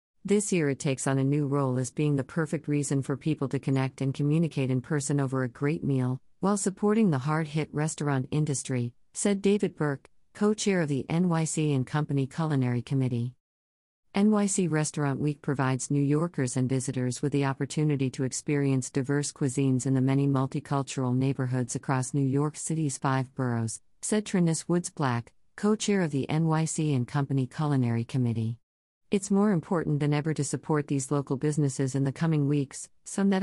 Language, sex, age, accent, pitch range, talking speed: English, female, 50-69, American, 130-160 Hz, 170 wpm